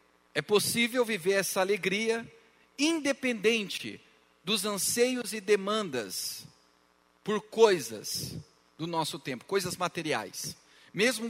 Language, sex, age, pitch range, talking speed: Portuguese, male, 40-59, 115-185 Hz, 95 wpm